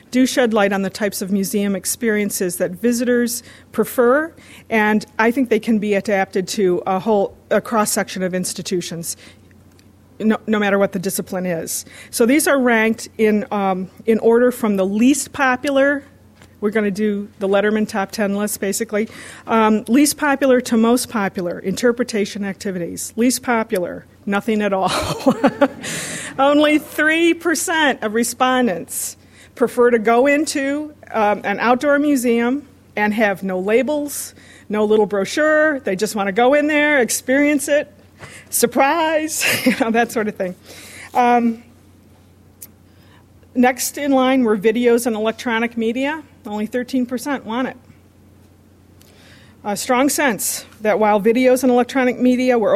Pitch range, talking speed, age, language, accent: 195-255 Hz, 145 wpm, 50-69, English, American